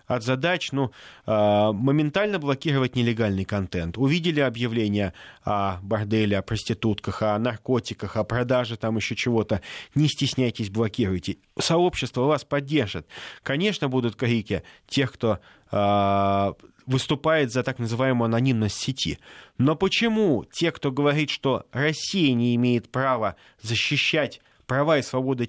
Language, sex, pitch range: Russian, male, 110-145 Hz